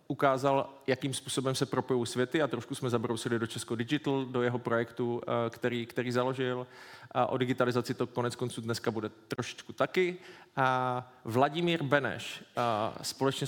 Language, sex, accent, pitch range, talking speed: Czech, male, native, 125-140 Hz, 140 wpm